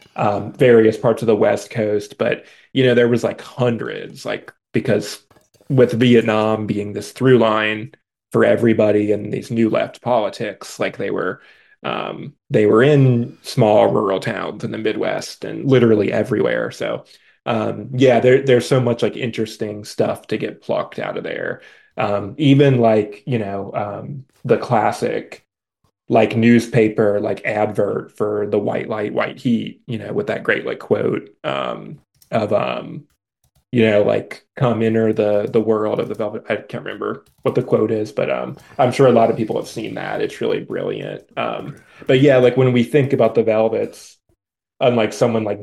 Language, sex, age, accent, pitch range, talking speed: English, male, 20-39, American, 110-130 Hz, 175 wpm